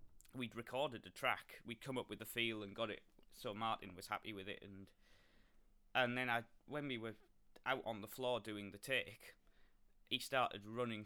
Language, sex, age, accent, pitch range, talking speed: English, male, 20-39, British, 100-120 Hz, 195 wpm